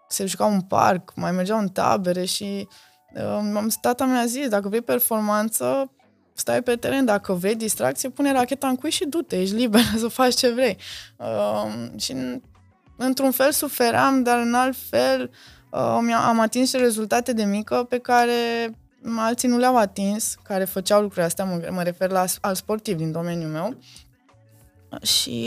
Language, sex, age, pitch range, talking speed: Romanian, female, 20-39, 175-240 Hz, 165 wpm